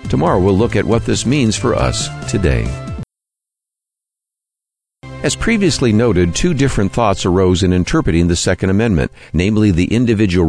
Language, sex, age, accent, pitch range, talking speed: English, male, 50-69, American, 85-115 Hz, 145 wpm